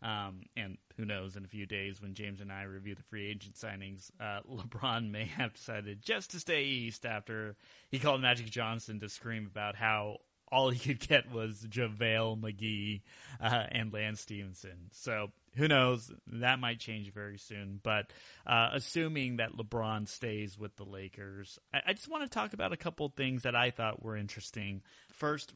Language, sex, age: English, male, 30-49